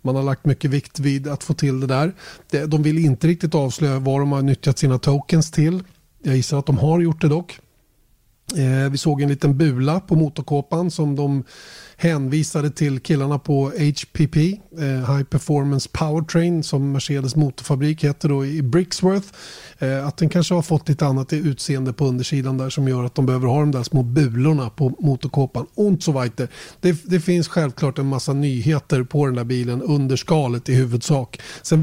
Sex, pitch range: male, 130-155 Hz